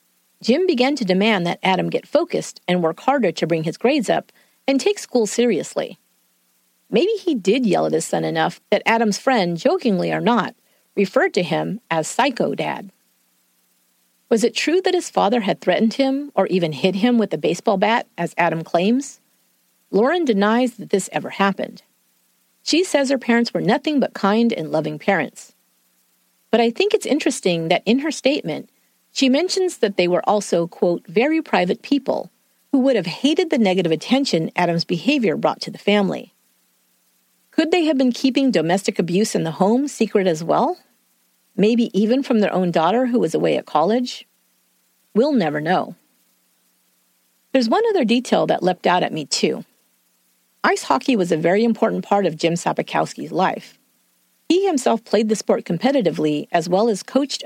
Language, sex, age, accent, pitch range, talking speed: English, female, 40-59, American, 160-255 Hz, 175 wpm